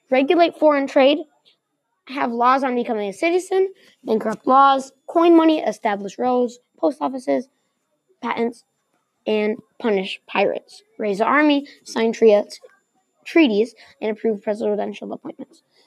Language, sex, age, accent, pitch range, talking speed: English, female, 20-39, American, 205-290 Hz, 115 wpm